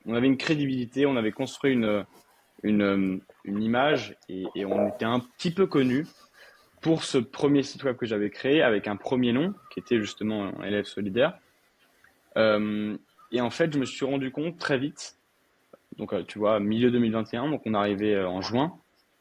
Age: 20-39